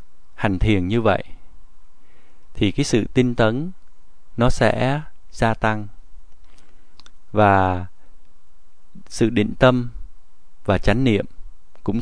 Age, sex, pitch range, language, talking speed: 20-39, male, 95-125 Hz, Vietnamese, 105 wpm